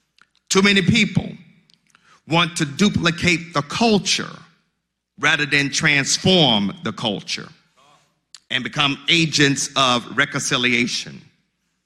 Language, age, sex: English, 50-69, male